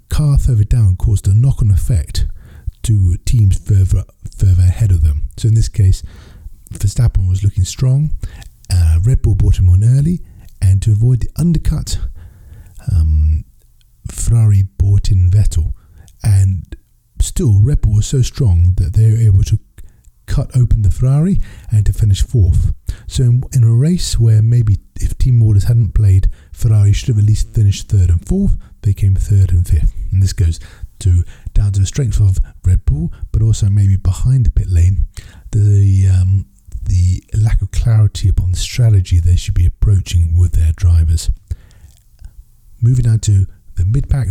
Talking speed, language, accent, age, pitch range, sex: 165 wpm, English, British, 40-59, 90-110 Hz, male